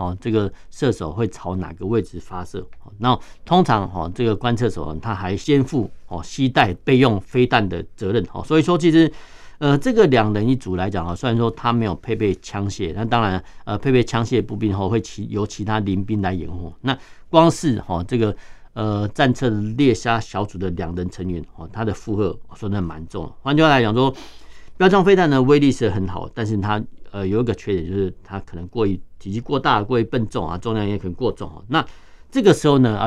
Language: Chinese